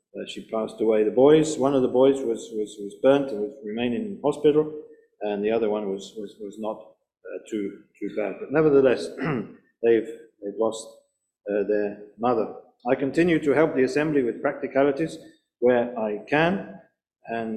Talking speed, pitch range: 175 wpm, 115-140 Hz